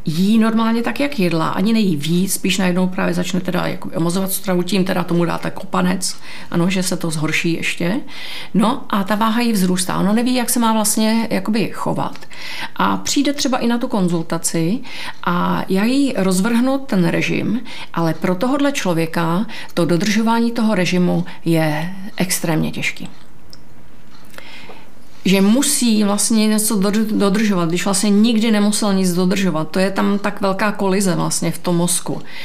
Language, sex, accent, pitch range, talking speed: Czech, female, native, 175-215 Hz, 160 wpm